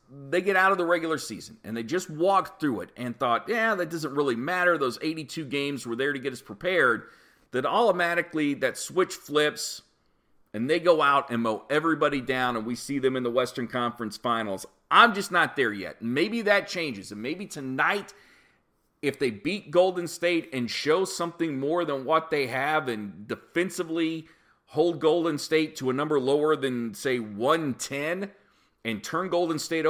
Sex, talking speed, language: male, 185 wpm, English